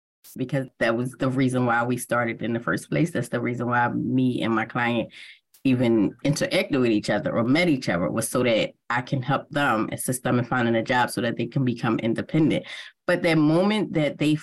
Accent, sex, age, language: American, female, 20-39, English